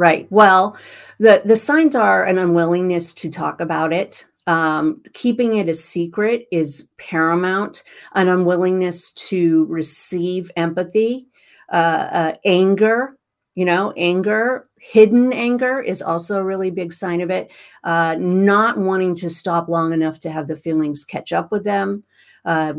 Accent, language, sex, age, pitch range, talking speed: American, English, female, 40-59, 165-210 Hz, 145 wpm